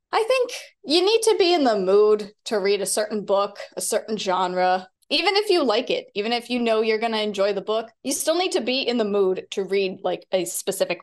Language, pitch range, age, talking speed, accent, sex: English, 195-280 Hz, 20-39, 245 wpm, American, female